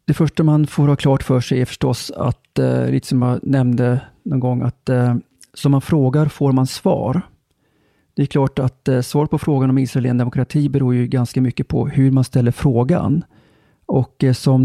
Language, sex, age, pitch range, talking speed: Swedish, male, 40-59, 125-145 Hz, 200 wpm